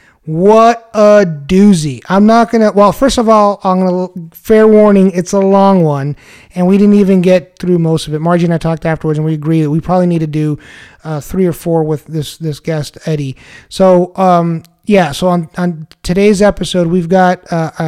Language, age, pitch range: English, 30-49, 160-190 Hz